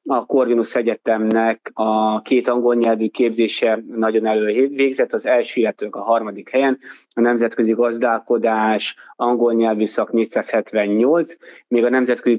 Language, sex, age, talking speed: Hungarian, male, 20-39, 125 wpm